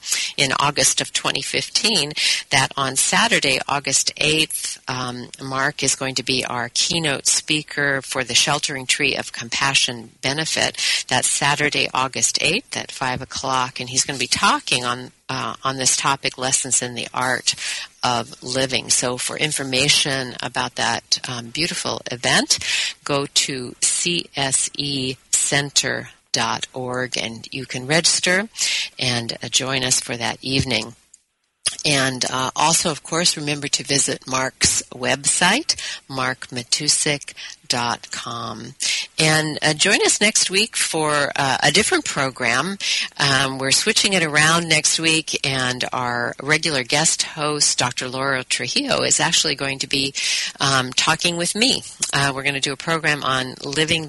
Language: English